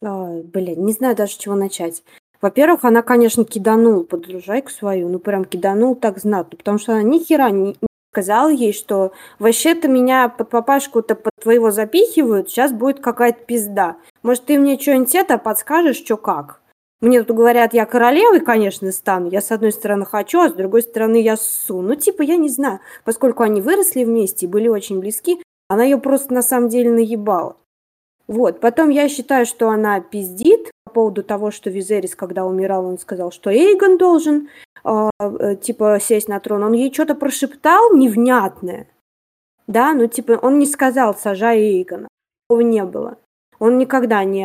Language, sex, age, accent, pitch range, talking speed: Russian, female, 20-39, native, 205-255 Hz, 175 wpm